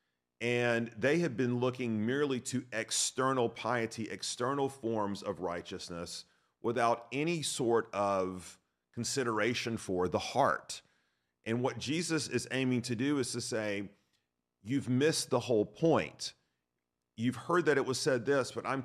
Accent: American